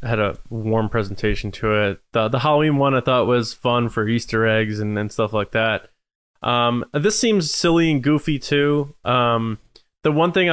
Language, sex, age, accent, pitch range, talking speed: English, male, 20-39, American, 110-130 Hz, 195 wpm